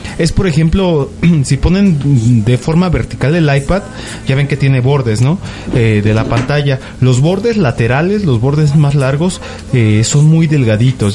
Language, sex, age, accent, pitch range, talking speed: Spanish, male, 30-49, Mexican, 120-155 Hz, 165 wpm